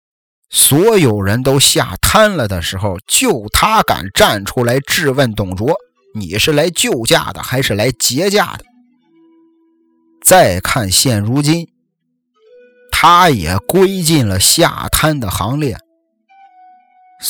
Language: Chinese